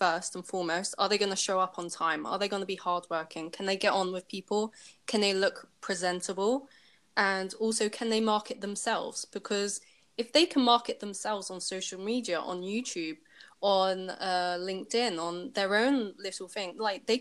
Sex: female